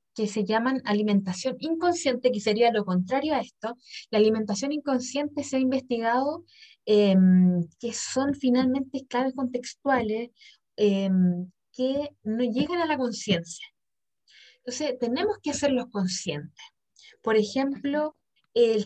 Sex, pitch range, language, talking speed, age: female, 210-275 Hz, Spanish, 120 wpm, 20-39